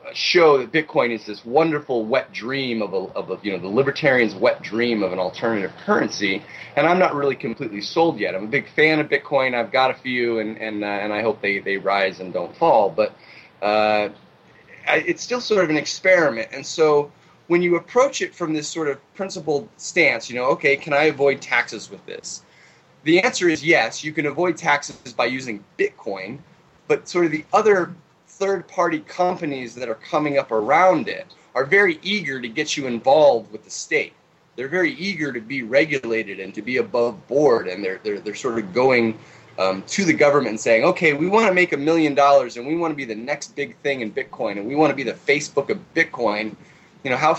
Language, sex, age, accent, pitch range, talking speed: English, male, 30-49, American, 115-165 Hz, 215 wpm